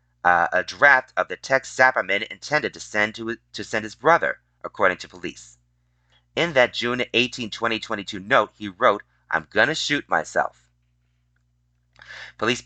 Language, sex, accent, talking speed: English, male, American, 150 wpm